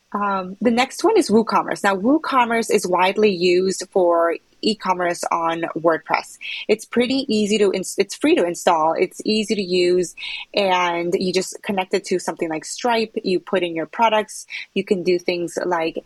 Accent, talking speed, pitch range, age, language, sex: American, 170 wpm, 175-215 Hz, 30-49, English, female